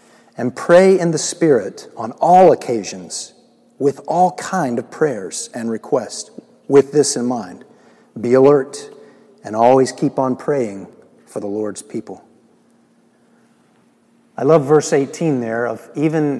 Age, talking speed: 50-69, 135 wpm